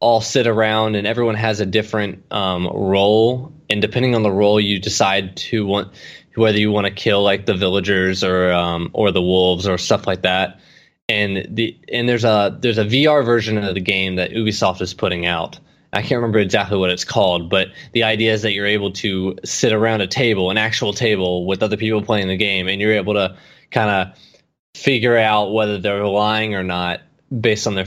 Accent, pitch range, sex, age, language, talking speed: American, 95-115 Hz, male, 20-39, English, 210 wpm